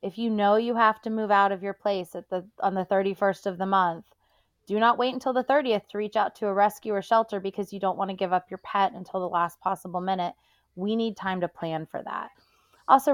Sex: female